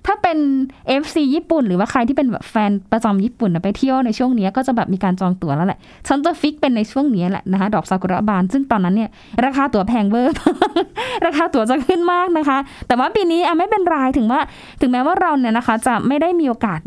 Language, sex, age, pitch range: Thai, female, 20-39, 200-280 Hz